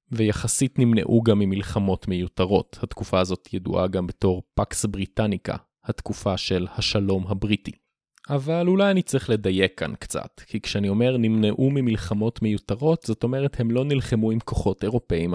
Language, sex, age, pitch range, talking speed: Hebrew, male, 20-39, 95-115 Hz, 145 wpm